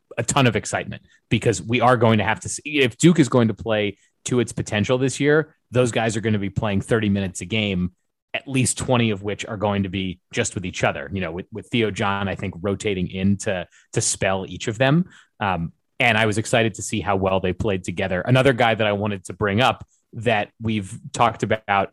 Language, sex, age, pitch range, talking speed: English, male, 30-49, 95-120 Hz, 240 wpm